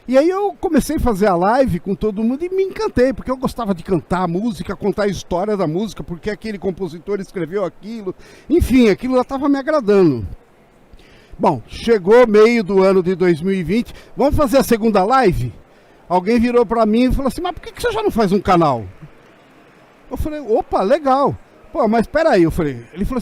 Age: 50-69